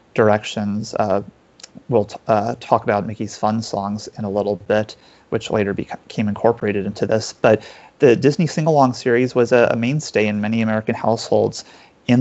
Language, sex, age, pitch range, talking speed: English, male, 30-49, 105-120 Hz, 160 wpm